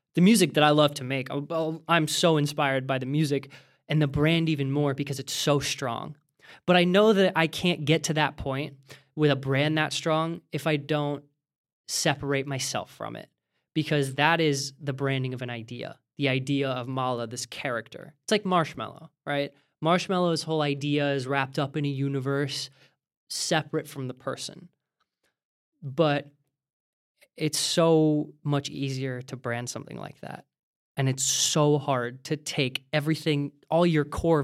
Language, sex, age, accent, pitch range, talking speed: English, male, 20-39, American, 135-155 Hz, 165 wpm